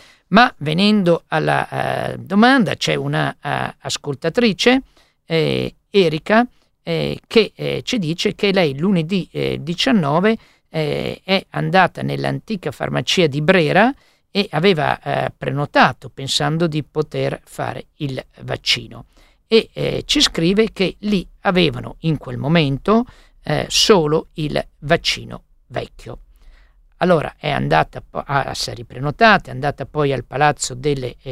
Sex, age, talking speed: male, 50-69, 120 wpm